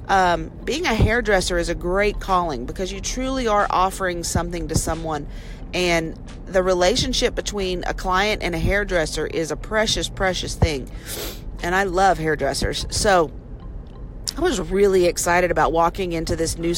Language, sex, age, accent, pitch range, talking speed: English, female, 40-59, American, 170-210 Hz, 155 wpm